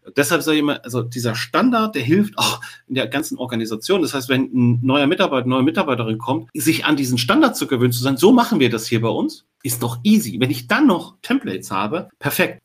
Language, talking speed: German, 230 wpm